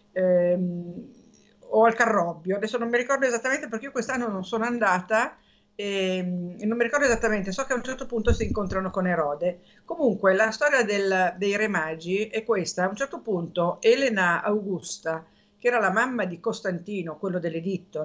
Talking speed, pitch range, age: 180 wpm, 180-215 Hz, 50-69